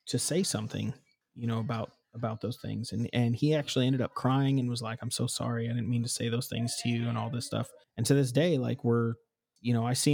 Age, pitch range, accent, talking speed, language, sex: 30-49, 120-135 Hz, American, 265 wpm, English, male